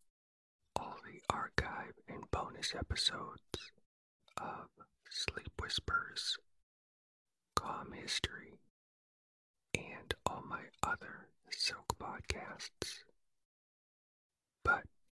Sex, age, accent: male, 50-69, American